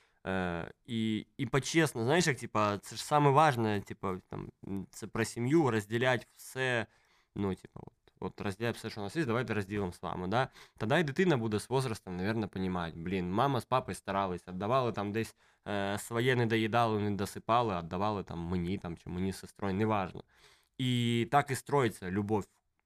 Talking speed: 180 wpm